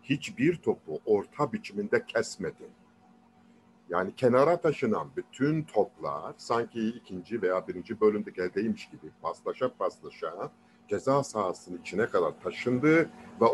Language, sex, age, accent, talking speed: Turkish, male, 50-69, native, 110 wpm